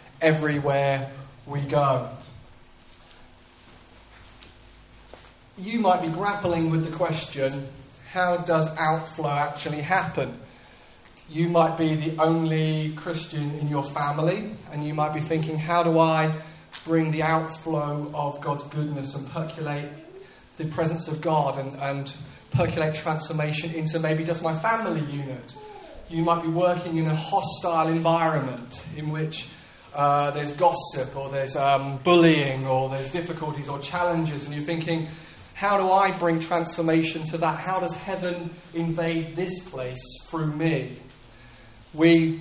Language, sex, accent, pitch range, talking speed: English, male, British, 145-170 Hz, 135 wpm